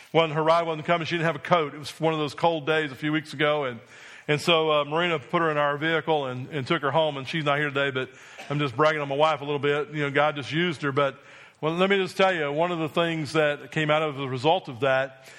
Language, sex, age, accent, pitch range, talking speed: English, male, 40-59, American, 140-155 Hz, 295 wpm